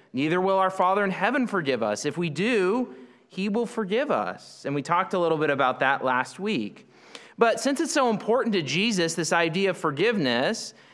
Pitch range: 155-220 Hz